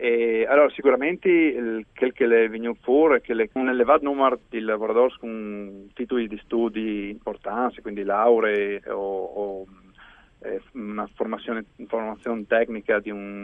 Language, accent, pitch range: Italian, native, 105-135 Hz